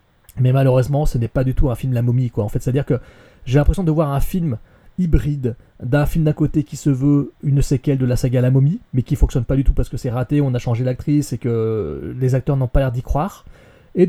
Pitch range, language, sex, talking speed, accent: 125-160 Hz, French, male, 260 wpm, French